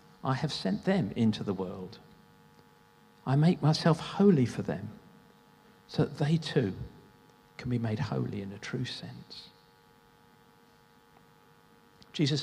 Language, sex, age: English, male, 50-69